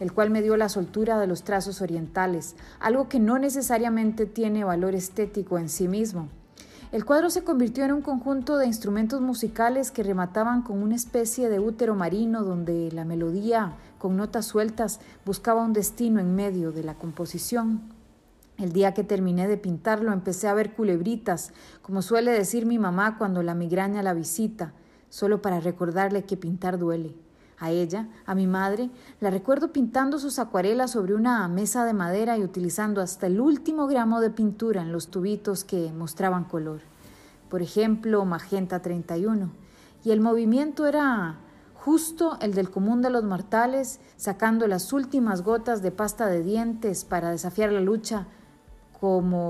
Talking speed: 165 wpm